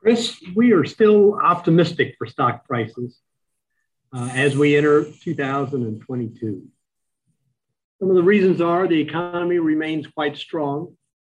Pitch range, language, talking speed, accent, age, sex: 130-175 Hz, English, 125 wpm, American, 50-69, male